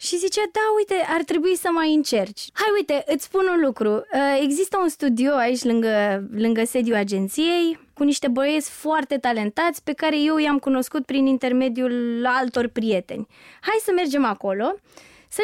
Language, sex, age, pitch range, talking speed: Romanian, female, 20-39, 230-320 Hz, 165 wpm